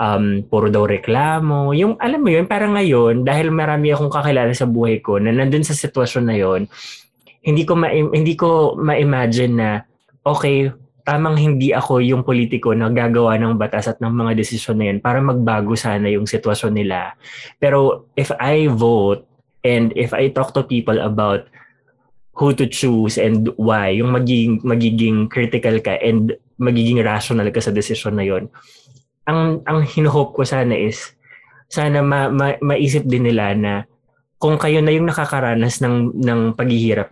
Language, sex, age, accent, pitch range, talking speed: Filipino, male, 20-39, native, 115-140 Hz, 165 wpm